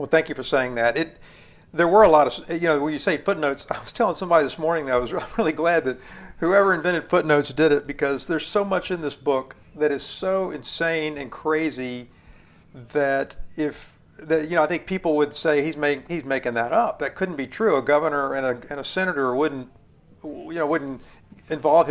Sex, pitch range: male, 140-170 Hz